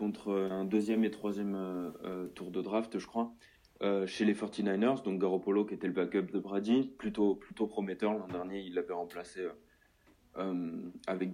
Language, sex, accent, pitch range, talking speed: French, male, French, 95-120 Hz, 165 wpm